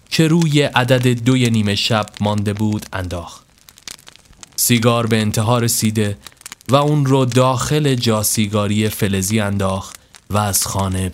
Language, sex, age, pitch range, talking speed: Persian, male, 30-49, 90-140 Hz, 130 wpm